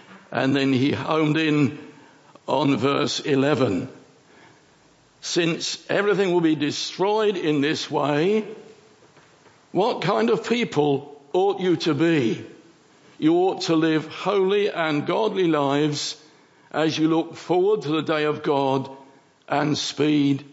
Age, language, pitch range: 60-79, English, 145-180 Hz